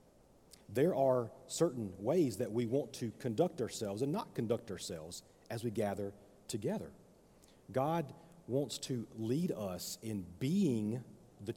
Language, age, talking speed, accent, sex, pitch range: English, 40-59, 135 wpm, American, male, 110-150 Hz